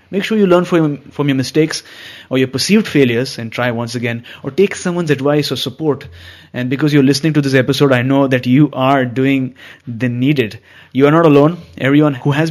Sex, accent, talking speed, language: male, Indian, 210 wpm, English